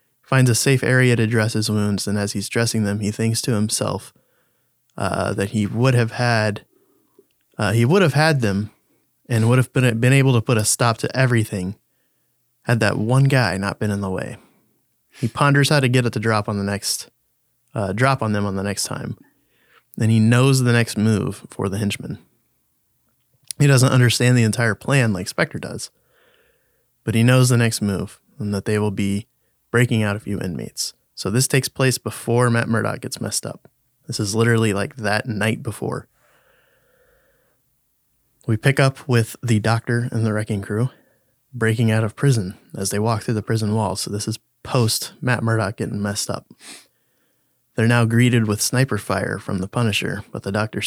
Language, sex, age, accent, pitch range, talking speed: English, male, 20-39, American, 105-130 Hz, 190 wpm